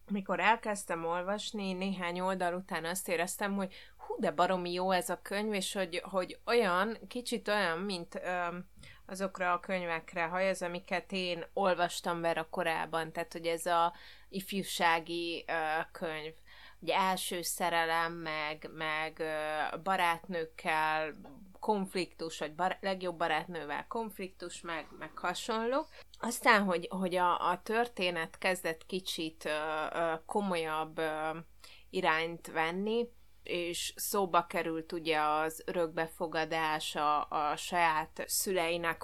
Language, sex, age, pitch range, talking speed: Hungarian, female, 30-49, 160-190 Hz, 120 wpm